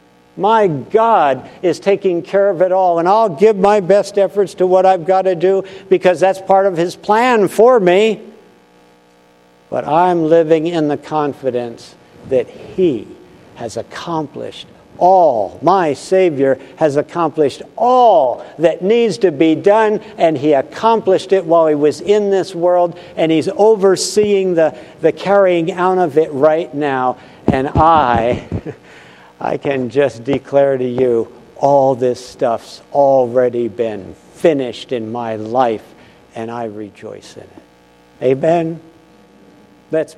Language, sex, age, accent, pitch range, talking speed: English, male, 60-79, American, 120-180 Hz, 140 wpm